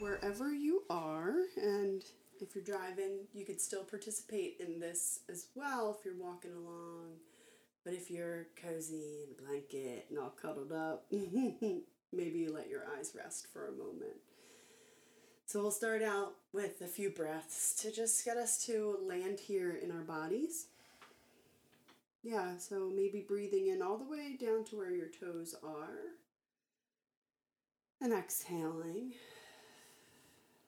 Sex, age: female, 30-49